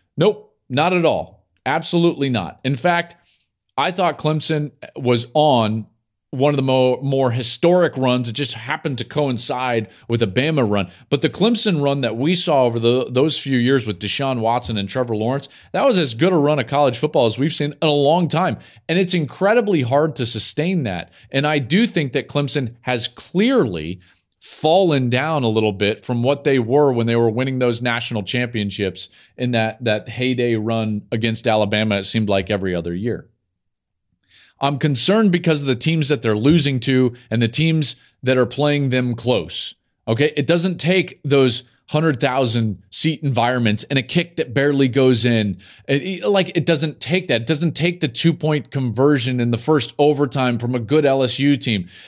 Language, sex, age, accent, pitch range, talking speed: English, male, 40-59, American, 115-155 Hz, 185 wpm